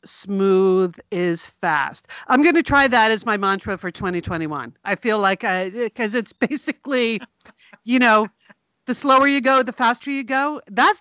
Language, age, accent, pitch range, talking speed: English, 50-69, American, 185-250 Hz, 165 wpm